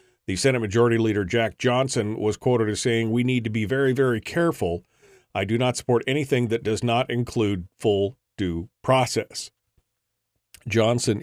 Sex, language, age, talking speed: male, English, 50-69, 160 wpm